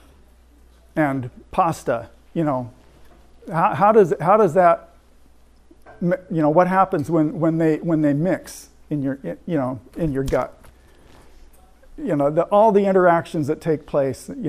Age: 50-69